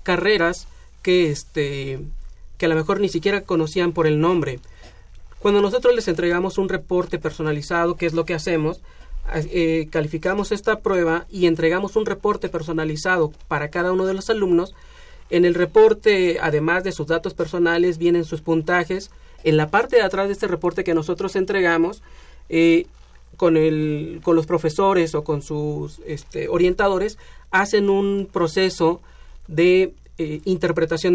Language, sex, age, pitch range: Spanish, male, 40-59, 160-190 Hz